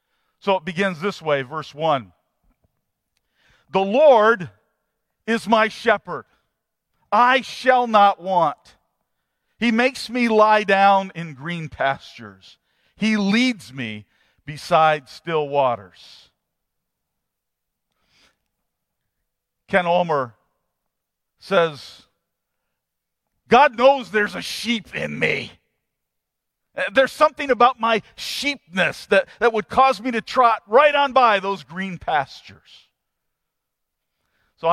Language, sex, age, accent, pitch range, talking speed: English, male, 50-69, American, 170-240 Hz, 100 wpm